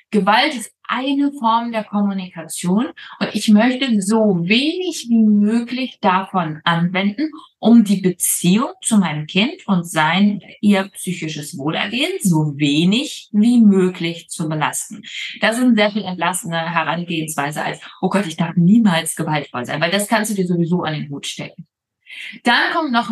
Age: 20-39